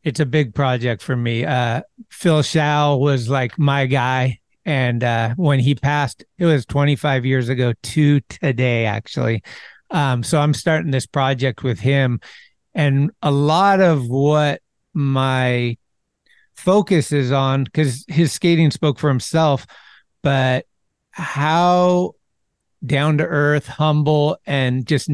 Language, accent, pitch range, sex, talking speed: English, American, 135-160 Hz, male, 135 wpm